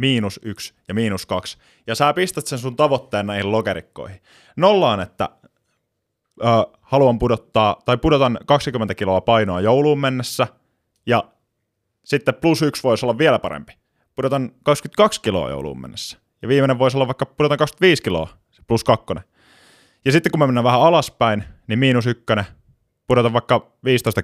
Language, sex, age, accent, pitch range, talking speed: Finnish, male, 20-39, native, 100-140 Hz, 150 wpm